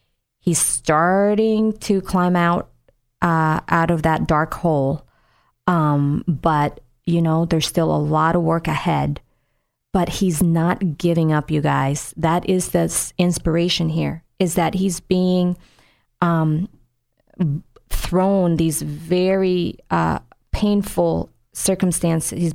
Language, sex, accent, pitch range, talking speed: English, female, American, 150-180 Hz, 120 wpm